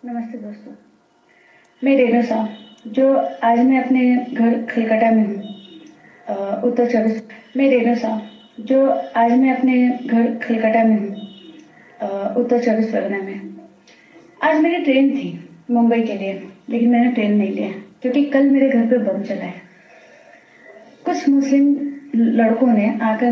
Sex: female